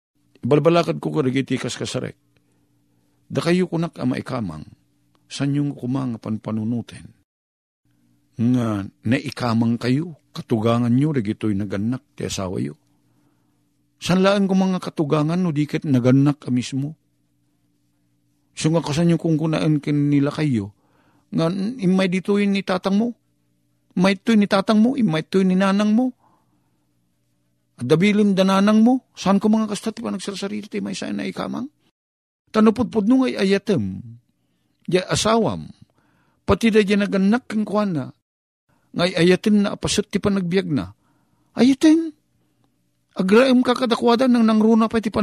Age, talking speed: 50-69, 125 wpm